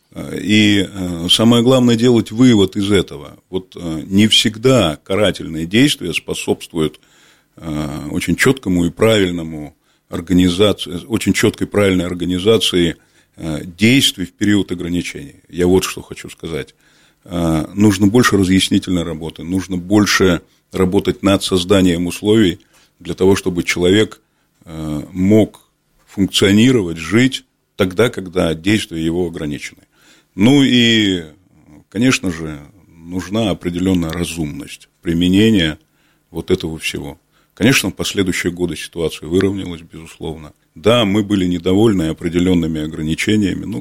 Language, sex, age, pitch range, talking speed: Russian, male, 40-59, 85-105 Hz, 110 wpm